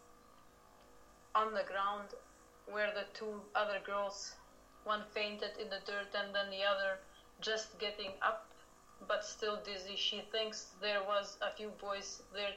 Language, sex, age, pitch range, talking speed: English, female, 30-49, 195-215 Hz, 150 wpm